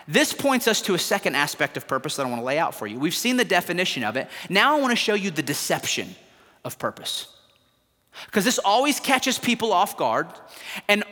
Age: 30-49